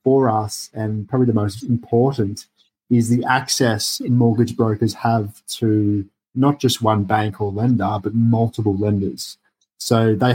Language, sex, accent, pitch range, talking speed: English, male, Australian, 105-120 Hz, 150 wpm